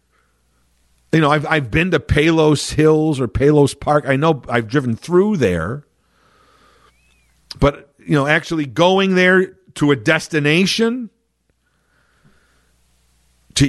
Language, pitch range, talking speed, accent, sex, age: English, 120-195 Hz, 120 wpm, American, male, 50-69